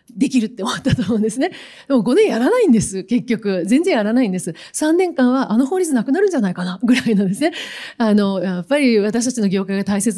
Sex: female